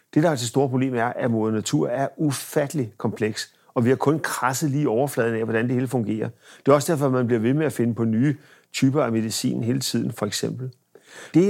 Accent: native